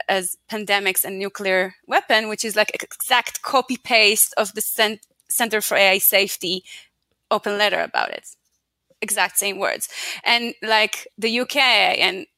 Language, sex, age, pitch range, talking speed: English, female, 20-39, 200-265 Hz, 145 wpm